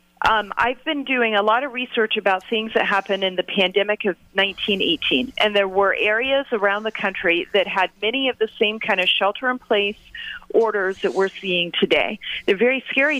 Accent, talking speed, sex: American, 185 wpm, female